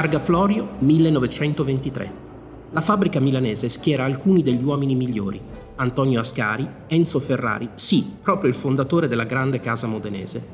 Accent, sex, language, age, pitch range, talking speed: native, male, Italian, 30-49, 115-155 Hz, 130 wpm